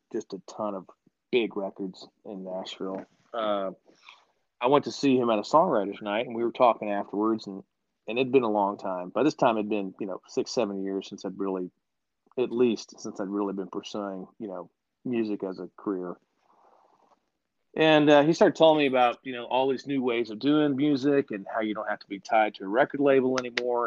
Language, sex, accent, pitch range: English, male, American, 100-120 Hz